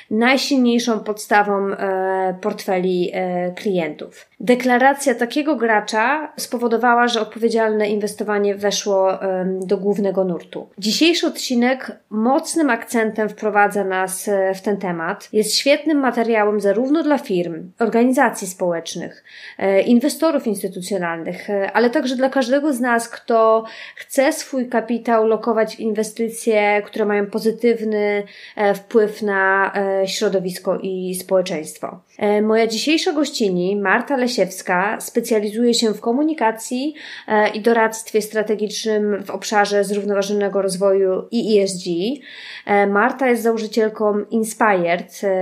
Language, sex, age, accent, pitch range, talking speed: Polish, female, 20-39, native, 200-235 Hz, 100 wpm